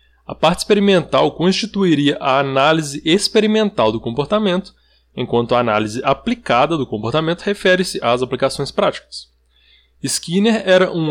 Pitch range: 120-190 Hz